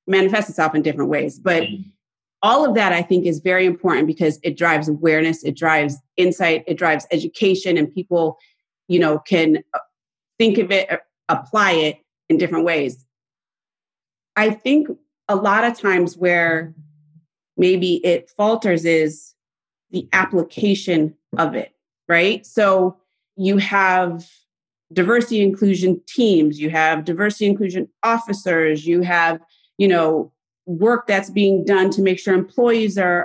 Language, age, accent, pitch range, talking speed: English, 30-49, American, 165-210 Hz, 140 wpm